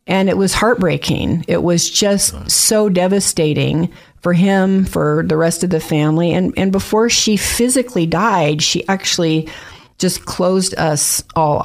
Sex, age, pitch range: female, 40-59, 160-205 Hz